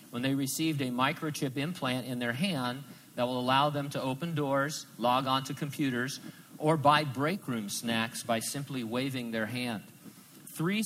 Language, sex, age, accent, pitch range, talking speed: English, male, 50-69, American, 120-150 Hz, 170 wpm